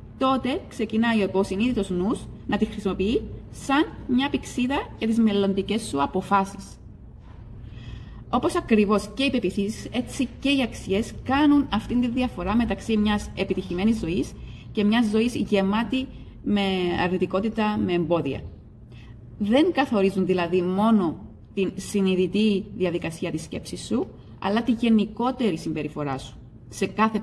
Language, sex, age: Greek, female, 30-49